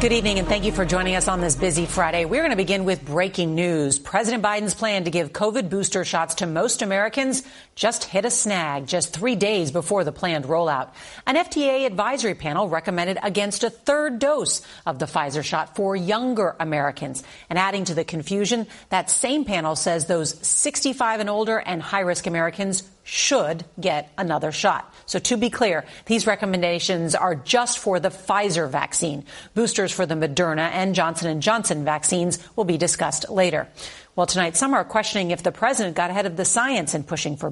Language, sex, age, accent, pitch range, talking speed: English, female, 40-59, American, 165-210 Hz, 190 wpm